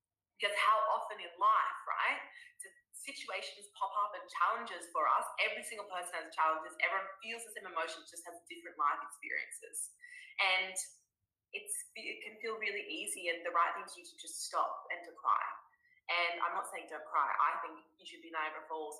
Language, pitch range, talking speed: English, 170-250 Hz, 190 wpm